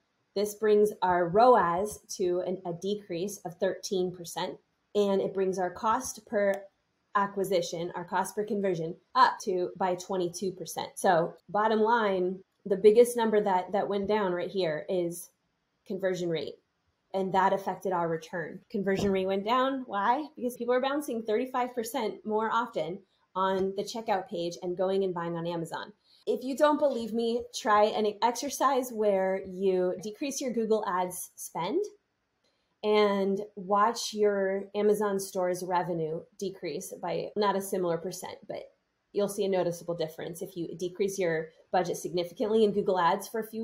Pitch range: 180-215 Hz